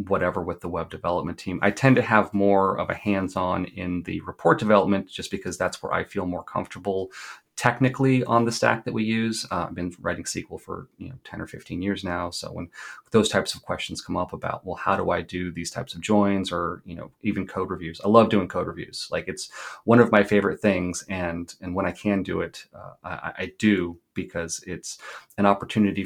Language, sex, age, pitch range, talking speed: English, male, 30-49, 90-105 Hz, 225 wpm